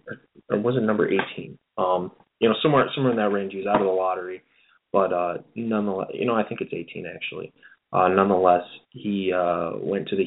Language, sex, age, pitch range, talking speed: English, male, 20-39, 90-105 Hz, 210 wpm